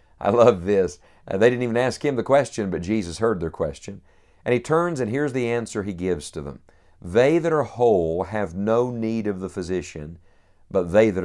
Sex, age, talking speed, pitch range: male, 50-69, 215 wpm, 95-115 Hz